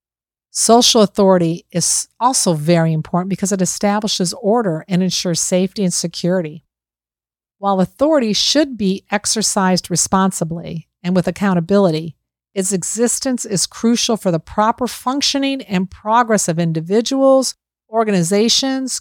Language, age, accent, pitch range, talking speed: English, 50-69, American, 170-225 Hz, 115 wpm